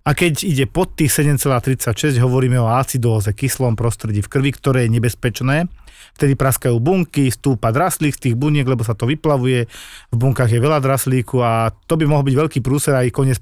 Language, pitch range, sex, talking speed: Slovak, 120-150 Hz, male, 190 wpm